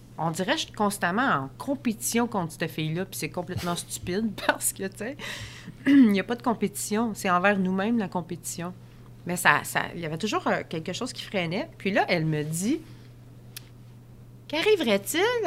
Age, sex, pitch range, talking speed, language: 30-49, female, 155-220 Hz, 180 wpm, French